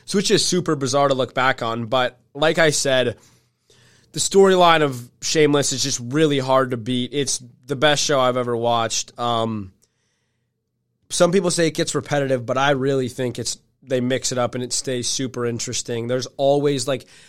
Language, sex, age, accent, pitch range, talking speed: English, male, 20-39, American, 125-160 Hz, 185 wpm